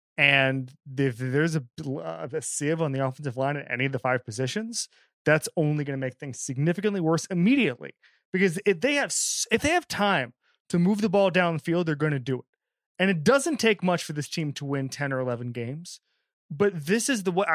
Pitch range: 140-190 Hz